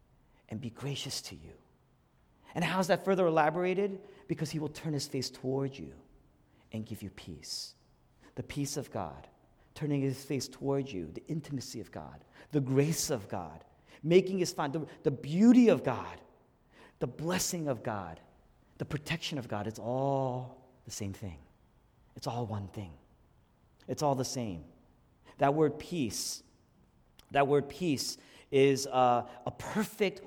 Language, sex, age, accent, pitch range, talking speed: English, male, 40-59, American, 135-225 Hz, 155 wpm